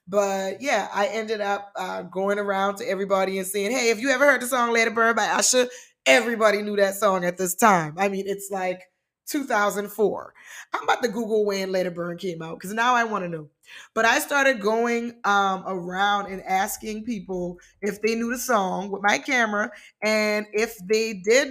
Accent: American